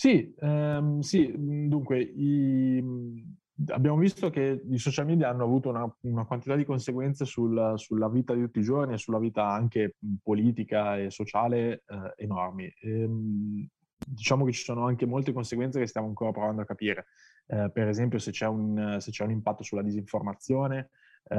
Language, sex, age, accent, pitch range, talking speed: Italian, male, 20-39, native, 105-130 Hz, 170 wpm